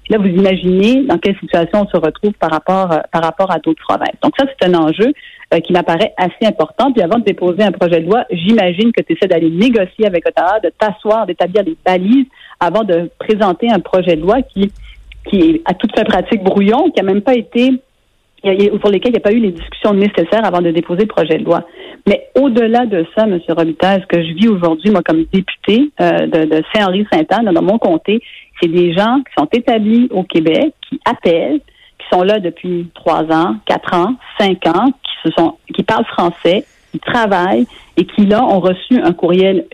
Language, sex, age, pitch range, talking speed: French, female, 40-59, 175-225 Hz, 215 wpm